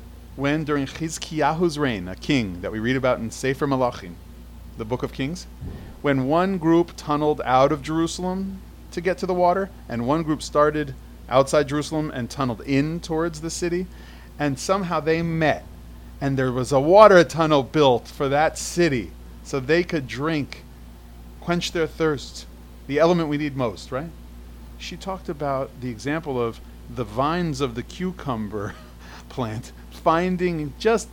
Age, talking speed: 40-59, 160 wpm